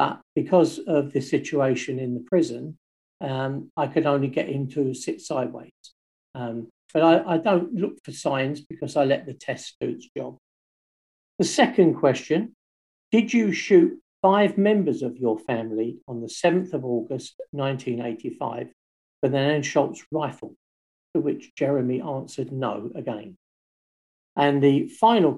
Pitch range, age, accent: 125-170 Hz, 50-69, British